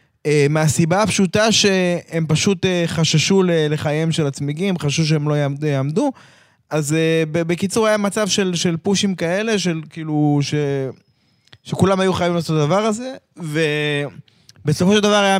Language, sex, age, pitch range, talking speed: Hebrew, male, 20-39, 140-175 Hz, 135 wpm